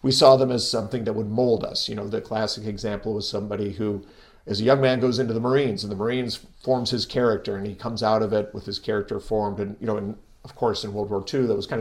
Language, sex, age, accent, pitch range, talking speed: English, male, 50-69, American, 105-130 Hz, 275 wpm